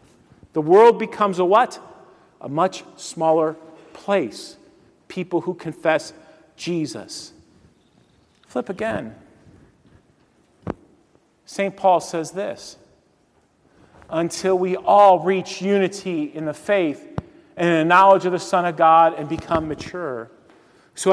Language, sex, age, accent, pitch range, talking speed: English, male, 40-59, American, 160-205 Hz, 115 wpm